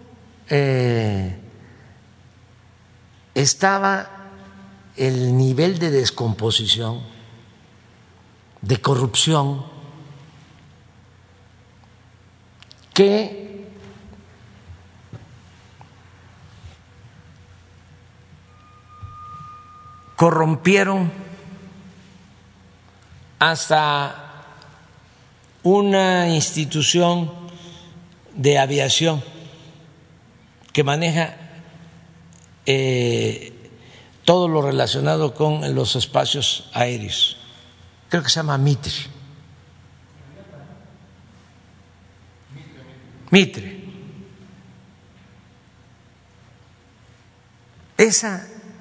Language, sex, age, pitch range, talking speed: Spanish, male, 60-79, 100-160 Hz, 40 wpm